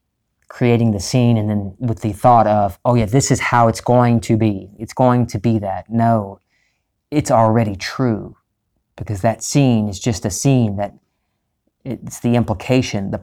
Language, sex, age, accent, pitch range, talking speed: English, male, 40-59, American, 100-120 Hz, 175 wpm